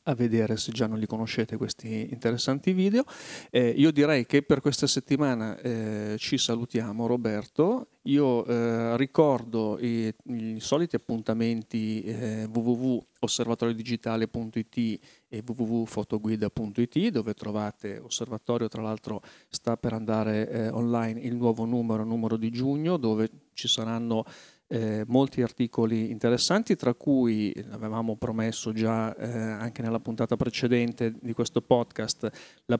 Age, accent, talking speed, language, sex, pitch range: 40-59, native, 130 wpm, Italian, male, 110-125 Hz